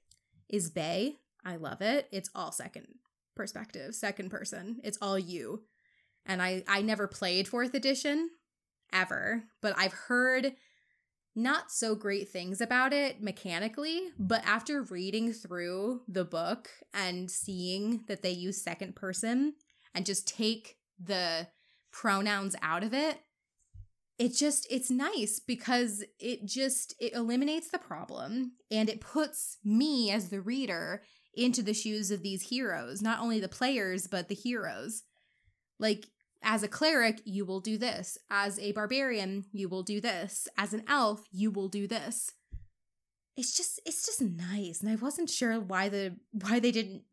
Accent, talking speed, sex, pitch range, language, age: American, 155 wpm, female, 195-245 Hz, English, 20-39